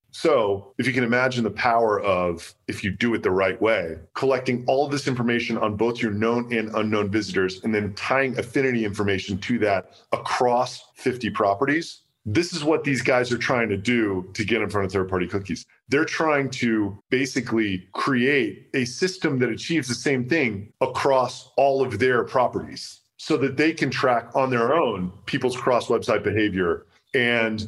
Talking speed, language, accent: 175 wpm, English, American